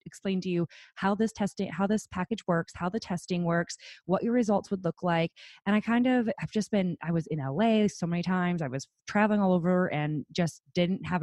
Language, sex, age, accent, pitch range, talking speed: English, female, 20-39, American, 170-220 Hz, 230 wpm